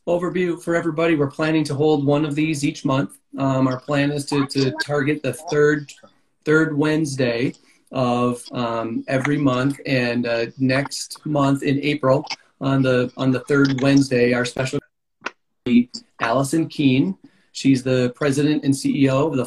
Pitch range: 130-150 Hz